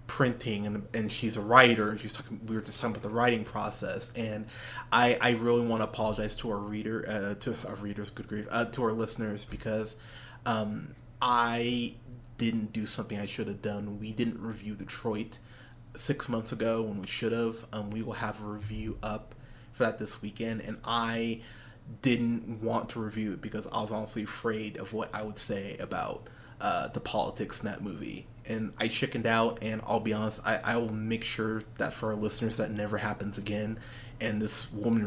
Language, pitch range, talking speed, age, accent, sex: English, 110-120 Hz, 200 wpm, 20-39, American, male